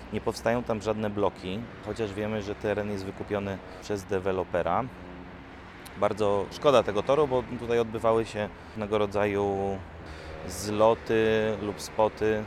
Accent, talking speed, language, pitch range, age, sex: native, 125 wpm, Polish, 95-110 Hz, 30-49, male